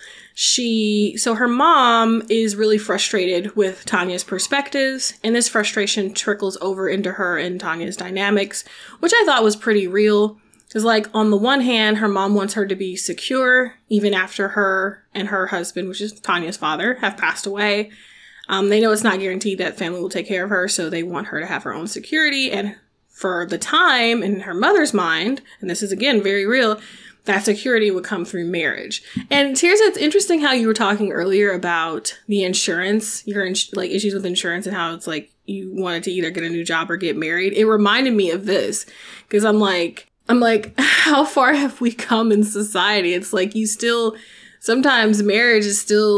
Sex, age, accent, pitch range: female, 20-39, American, 190-225 Hz